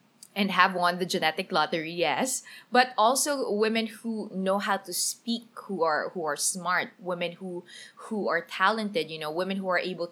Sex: female